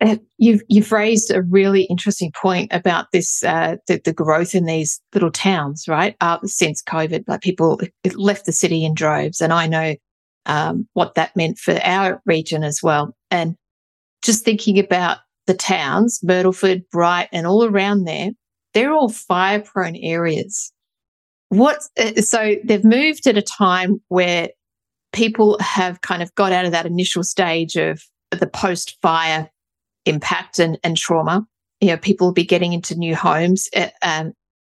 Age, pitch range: 50-69, 170-205 Hz